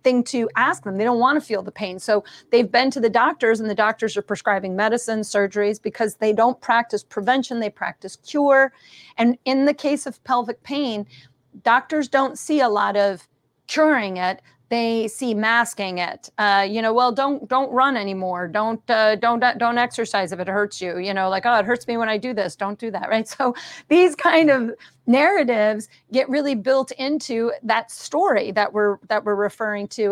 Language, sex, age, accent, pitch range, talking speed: English, female, 40-59, American, 210-260 Hz, 200 wpm